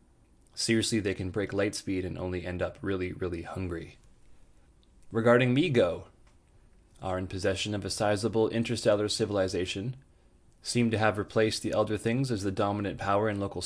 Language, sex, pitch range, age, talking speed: English, male, 90-110 Hz, 20-39, 160 wpm